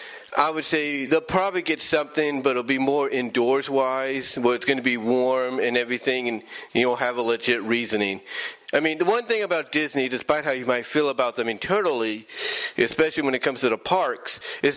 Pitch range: 120-150 Hz